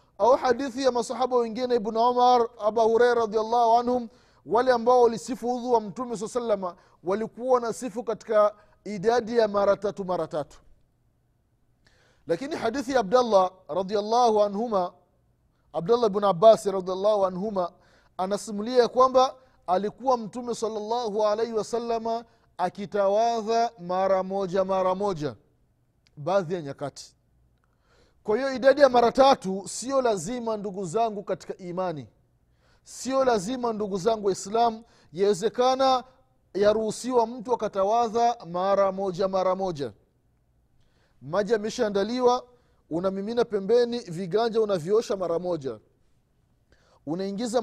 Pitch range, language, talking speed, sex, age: 190-235 Hz, Swahili, 110 wpm, male, 30-49